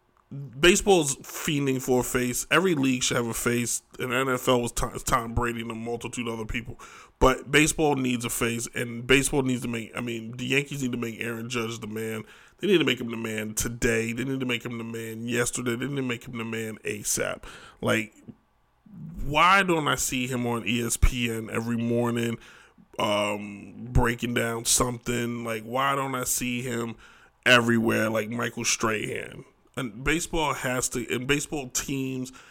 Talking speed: 185 wpm